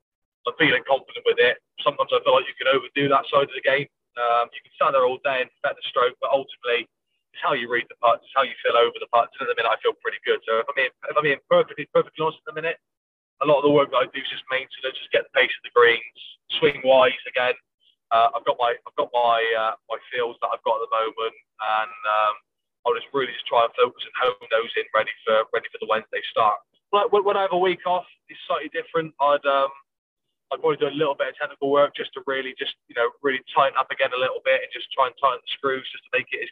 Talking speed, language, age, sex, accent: 275 wpm, English, 20-39, male, British